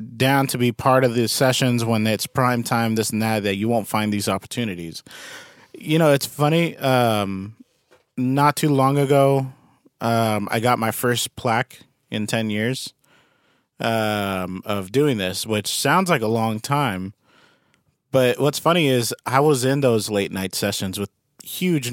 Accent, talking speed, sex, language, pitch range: American, 165 wpm, male, English, 105-135 Hz